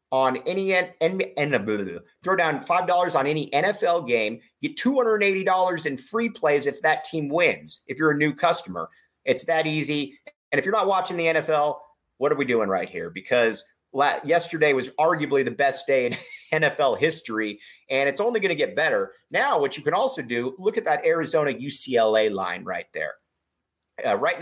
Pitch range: 130-190 Hz